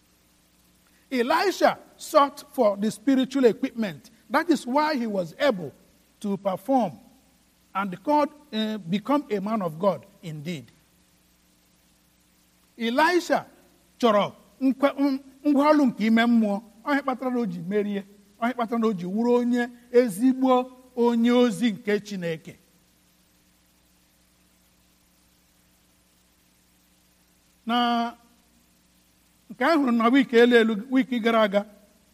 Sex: male